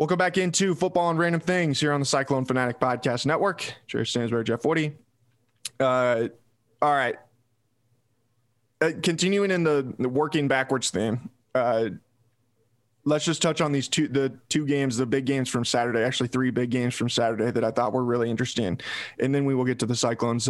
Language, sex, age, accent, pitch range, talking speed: English, male, 20-39, American, 120-145 Hz, 185 wpm